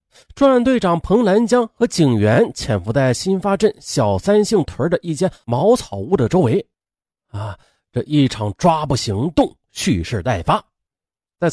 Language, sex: Chinese, male